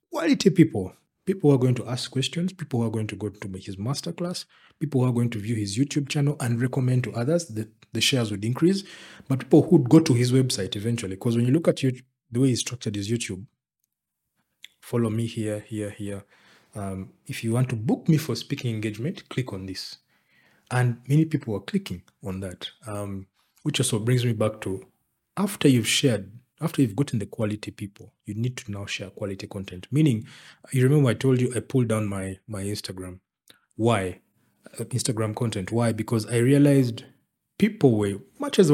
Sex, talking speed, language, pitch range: male, 200 wpm, English, 110-145 Hz